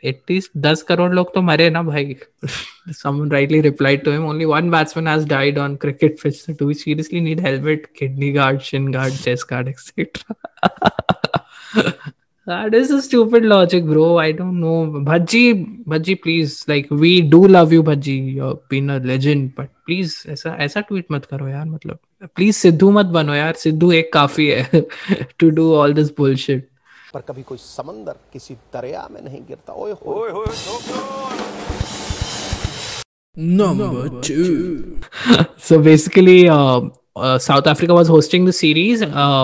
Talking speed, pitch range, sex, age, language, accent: 100 wpm, 140-170 Hz, male, 20-39, Hindi, native